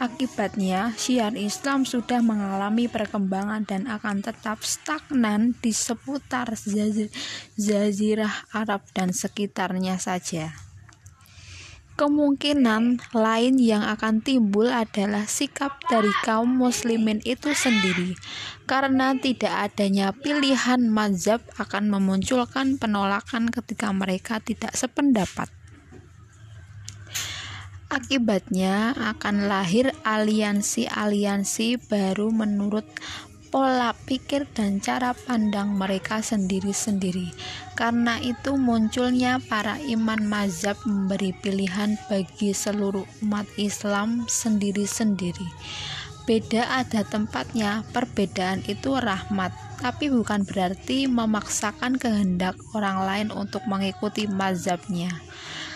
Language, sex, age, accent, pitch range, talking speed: Indonesian, female, 20-39, native, 195-240 Hz, 90 wpm